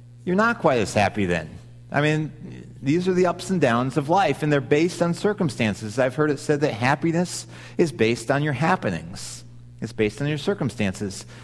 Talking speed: 195 wpm